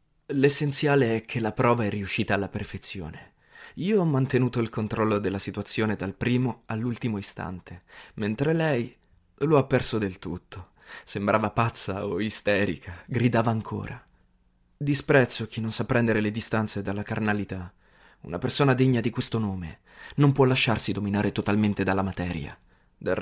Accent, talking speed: native, 145 wpm